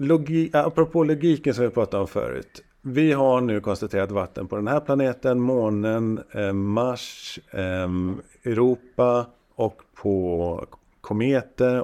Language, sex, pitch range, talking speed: Swedish, male, 100-125 Hz, 115 wpm